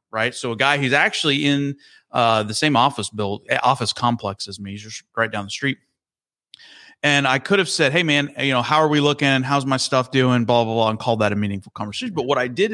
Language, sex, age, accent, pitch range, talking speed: English, male, 30-49, American, 110-145 Hz, 245 wpm